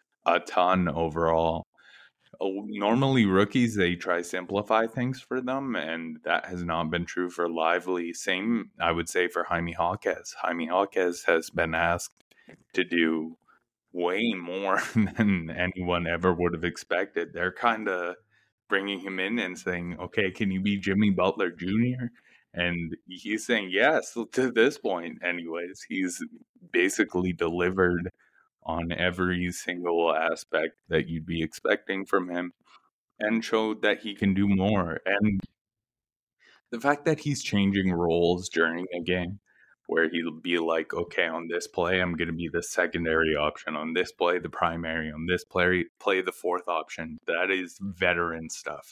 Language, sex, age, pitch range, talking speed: English, male, 20-39, 85-100 Hz, 155 wpm